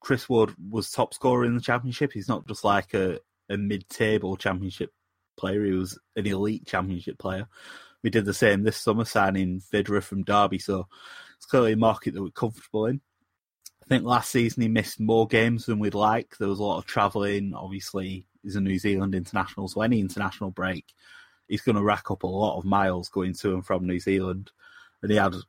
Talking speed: 205 wpm